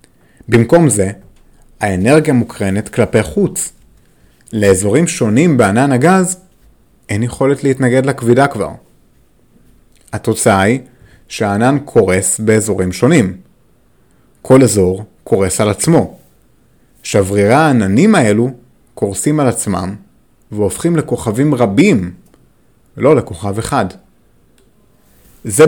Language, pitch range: Hebrew, 105-145 Hz